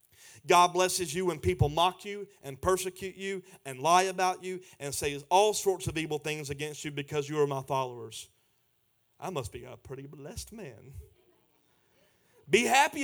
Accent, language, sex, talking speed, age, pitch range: American, English, male, 170 wpm, 30-49, 140-180 Hz